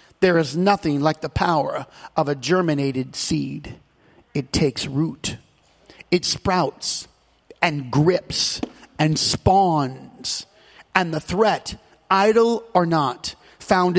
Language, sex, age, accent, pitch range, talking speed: English, male, 40-59, American, 170-240 Hz, 110 wpm